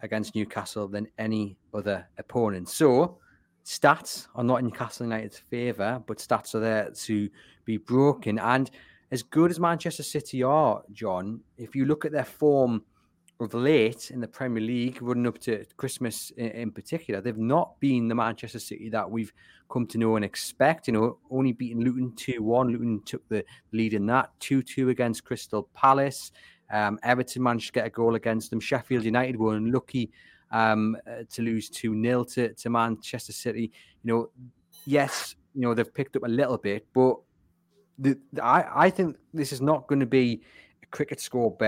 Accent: British